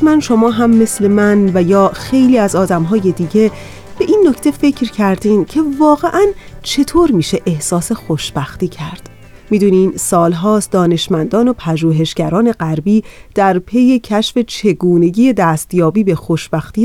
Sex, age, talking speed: female, 30-49, 135 wpm